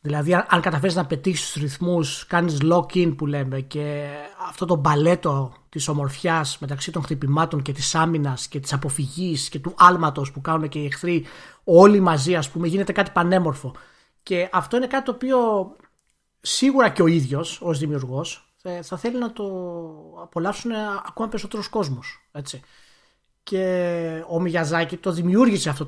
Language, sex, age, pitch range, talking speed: Greek, male, 30-49, 150-185 Hz, 155 wpm